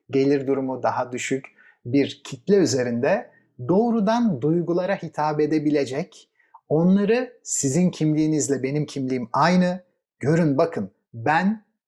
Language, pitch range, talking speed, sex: Turkish, 140-180 Hz, 100 wpm, male